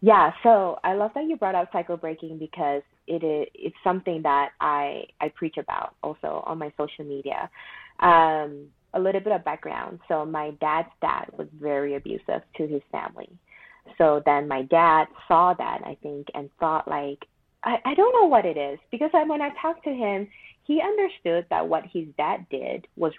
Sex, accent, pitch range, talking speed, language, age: female, American, 155-230 Hz, 190 wpm, English, 30-49